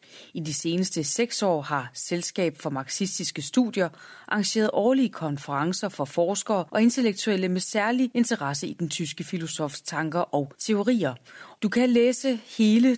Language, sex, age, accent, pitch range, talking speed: Danish, female, 30-49, native, 155-220 Hz, 145 wpm